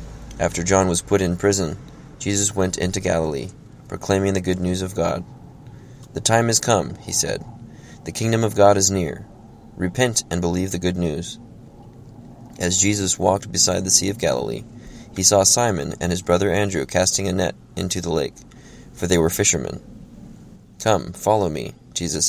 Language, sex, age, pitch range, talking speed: English, male, 20-39, 90-110 Hz, 170 wpm